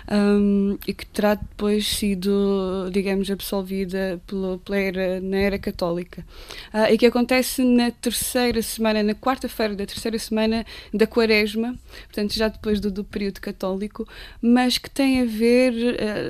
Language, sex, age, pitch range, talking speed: Portuguese, female, 20-39, 195-225 Hz, 130 wpm